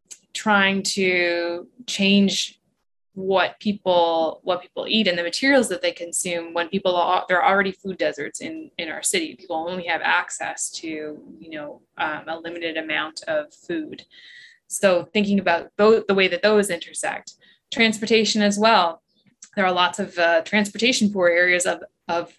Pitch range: 170-205 Hz